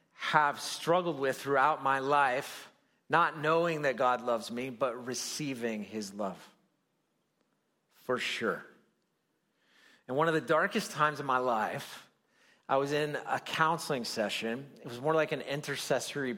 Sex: male